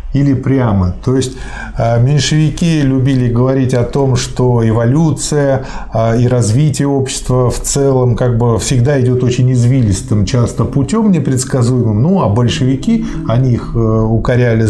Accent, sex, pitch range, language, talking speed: native, male, 120-145 Hz, Russian, 125 wpm